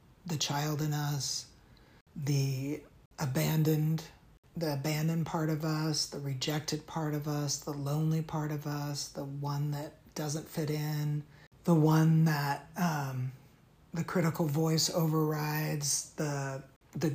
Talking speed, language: 130 wpm, English